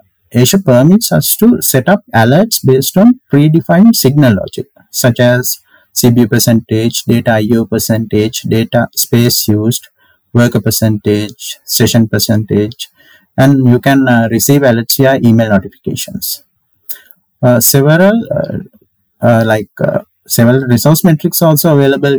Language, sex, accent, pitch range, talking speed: English, male, Indian, 115-135 Hz, 125 wpm